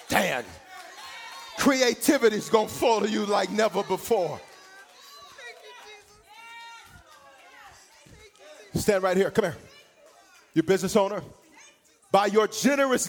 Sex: male